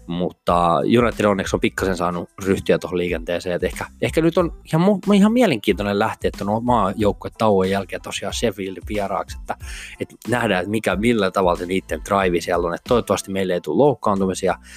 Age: 20-39